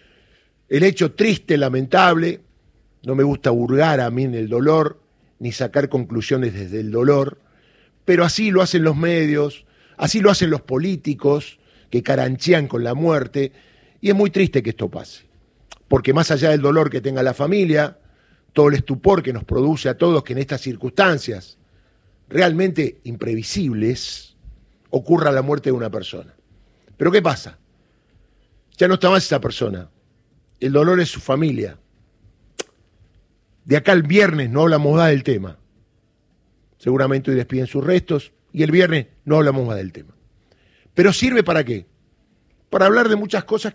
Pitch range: 120-165 Hz